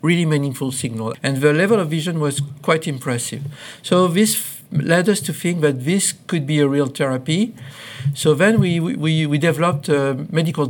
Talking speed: 180 wpm